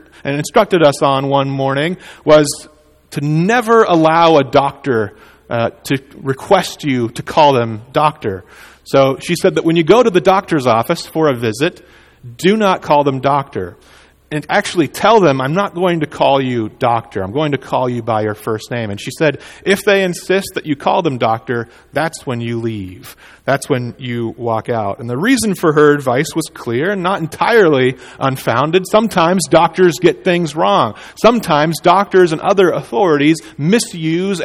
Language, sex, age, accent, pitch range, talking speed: English, male, 40-59, American, 135-180 Hz, 180 wpm